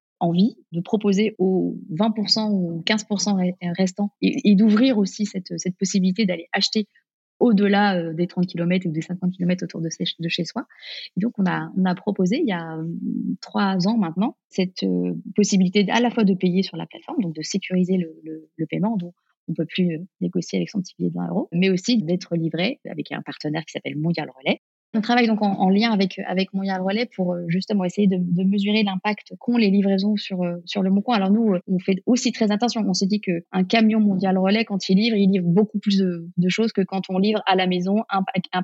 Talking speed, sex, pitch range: 215 wpm, female, 175-205 Hz